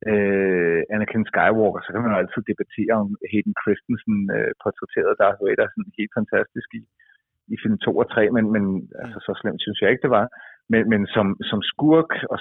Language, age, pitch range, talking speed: Danish, 30-49, 100-125 Hz, 185 wpm